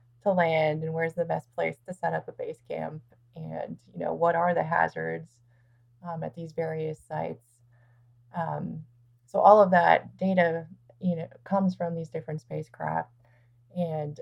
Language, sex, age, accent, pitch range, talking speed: English, female, 20-39, American, 120-175 Hz, 165 wpm